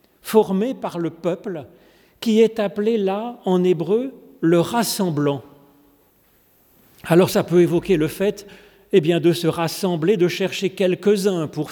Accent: French